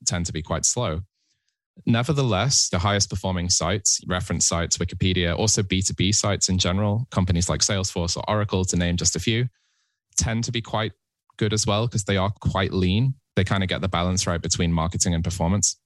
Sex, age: male, 20-39